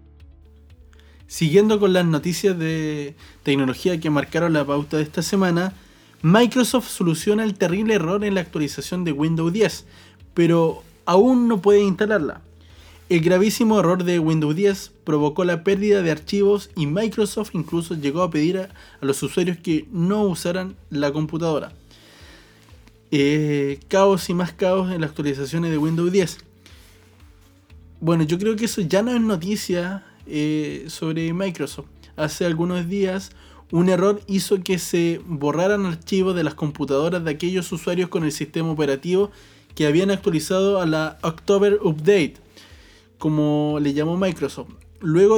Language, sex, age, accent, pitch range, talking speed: Spanish, male, 20-39, Argentinian, 150-195 Hz, 145 wpm